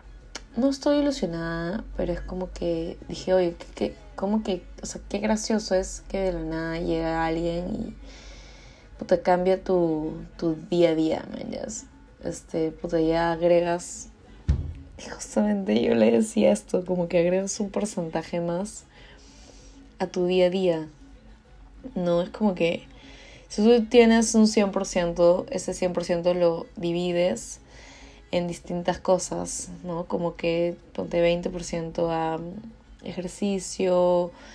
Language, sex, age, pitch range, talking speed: Spanish, female, 20-39, 170-190 Hz, 130 wpm